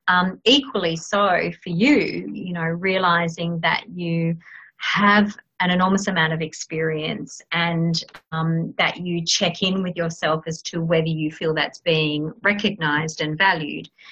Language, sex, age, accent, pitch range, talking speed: English, female, 30-49, Australian, 165-200 Hz, 145 wpm